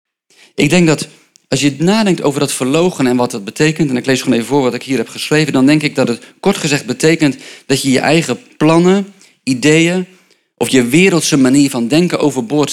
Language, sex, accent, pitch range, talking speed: Dutch, male, Dutch, 135-175 Hz, 210 wpm